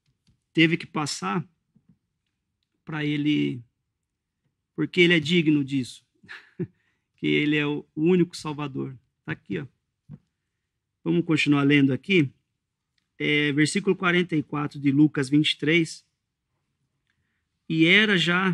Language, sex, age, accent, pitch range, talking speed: English, male, 40-59, Brazilian, 135-170 Hz, 105 wpm